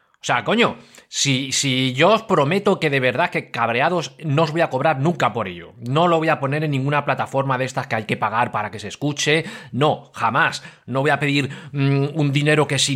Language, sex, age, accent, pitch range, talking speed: Spanish, male, 30-49, Spanish, 120-150 Hz, 225 wpm